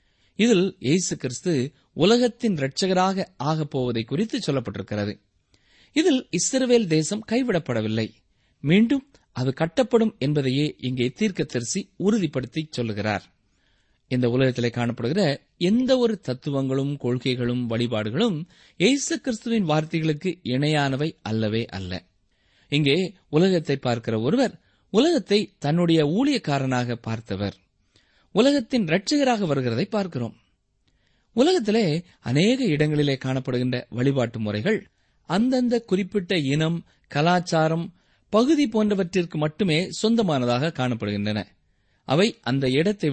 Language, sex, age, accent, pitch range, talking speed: Tamil, male, 20-39, native, 120-195 Hz, 90 wpm